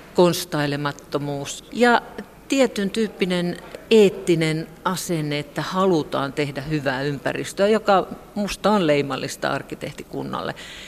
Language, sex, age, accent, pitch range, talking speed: Finnish, female, 50-69, native, 145-185 Hz, 90 wpm